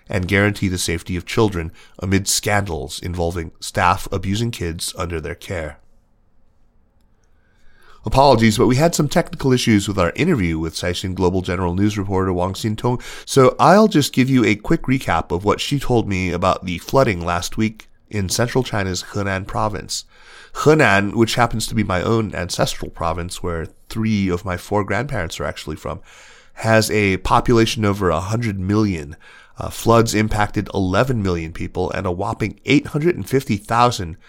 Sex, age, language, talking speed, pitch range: male, 30-49, English, 160 wpm, 90-110 Hz